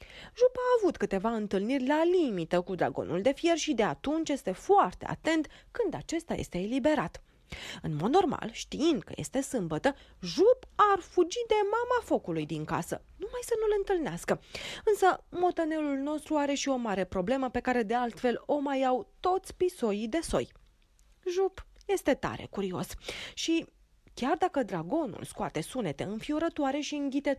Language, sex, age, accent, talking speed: Romanian, female, 30-49, native, 160 wpm